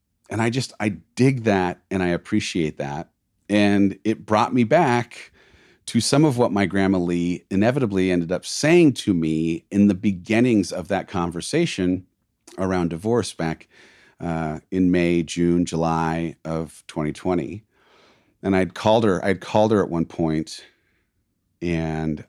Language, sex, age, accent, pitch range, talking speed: English, male, 40-59, American, 85-115 Hz, 150 wpm